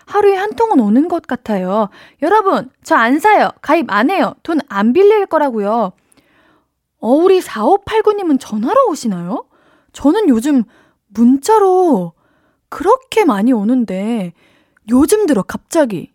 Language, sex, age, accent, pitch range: Korean, female, 20-39, native, 220-310 Hz